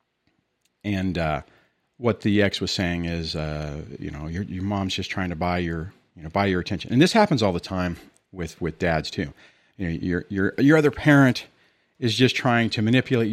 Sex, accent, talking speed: male, American, 205 wpm